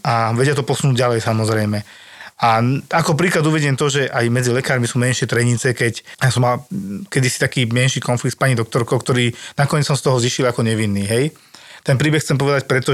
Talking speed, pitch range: 195 wpm, 120-145 Hz